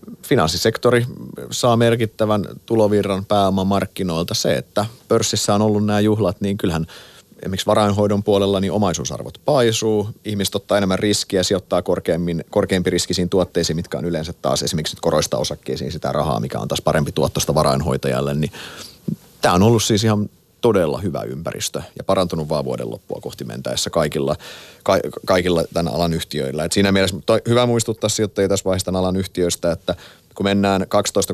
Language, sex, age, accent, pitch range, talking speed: Finnish, male, 30-49, native, 80-105 Hz, 155 wpm